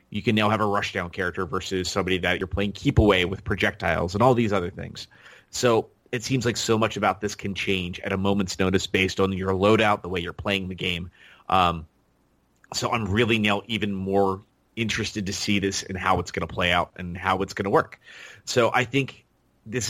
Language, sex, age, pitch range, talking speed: English, male, 30-49, 95-105 Hz, 220 wpm